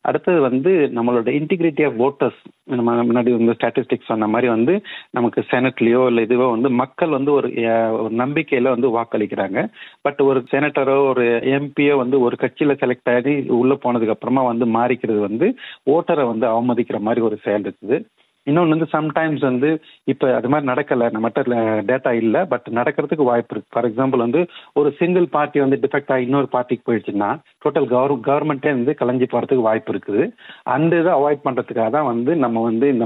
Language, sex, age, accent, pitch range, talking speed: Tamil, male, 40-59, native, 115-140 Hz, 160 wpm